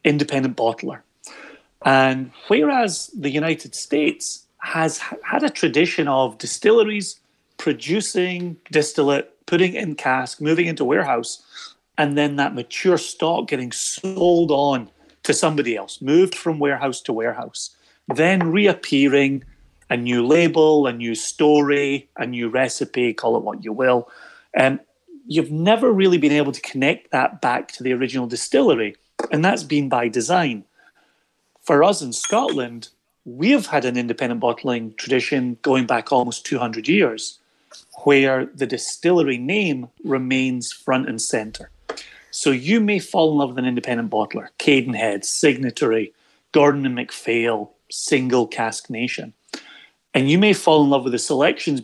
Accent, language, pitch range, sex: British, English, 125-160 Hz, male